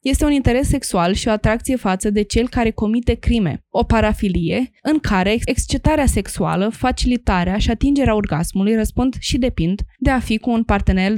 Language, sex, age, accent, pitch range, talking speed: Romanian, female, 20-39, native, 195-245 Hz, 170 wpm